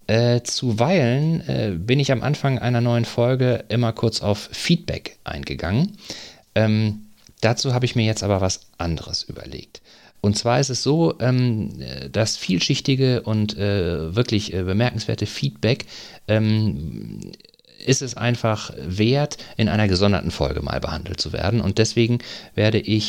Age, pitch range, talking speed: 40-59, 90-115 Hz, 145 wpm